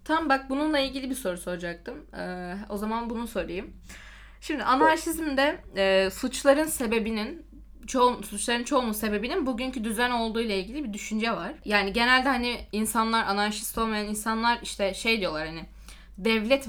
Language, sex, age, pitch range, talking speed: Turkish, female, 10-29, 200-255 Hz, 145 wpm